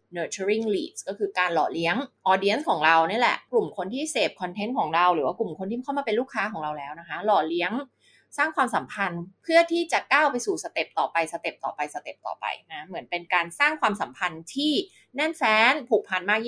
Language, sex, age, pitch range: Thai, female, 20-39, 175-270 Hz